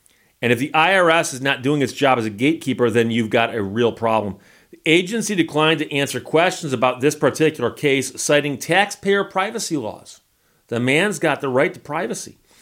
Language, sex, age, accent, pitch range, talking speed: English, male, 40-59, American, 125-165 Hz, 185 wpm